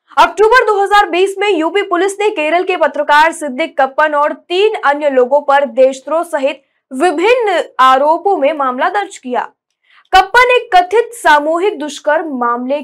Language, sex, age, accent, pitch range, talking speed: Hindi, female, 20-39, native, 275-380 Hz, 130 wpm